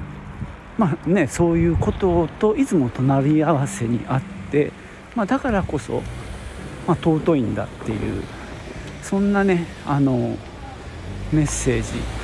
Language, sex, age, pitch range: Japanese, male, 50-69, 115-165 Hz